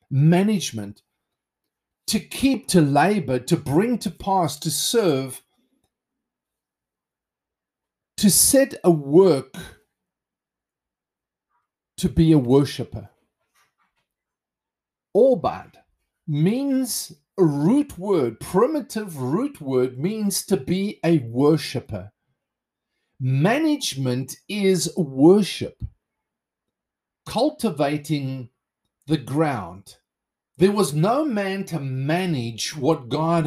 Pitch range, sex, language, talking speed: 135-195 Hz, male, English, 80 wpm